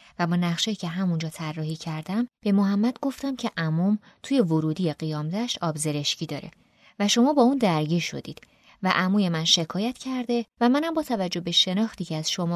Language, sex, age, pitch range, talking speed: Persian, female, 20-39, 165-225 Hz, 175 wpm